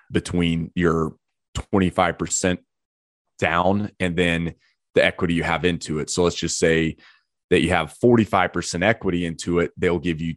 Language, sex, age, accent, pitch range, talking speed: English, male, 30-49, American, 80-95 Hz, 160 wpm